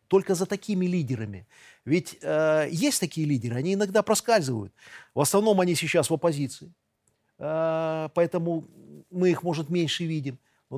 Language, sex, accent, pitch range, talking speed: Russian, male, native, 130-180 Hz, 145 wpm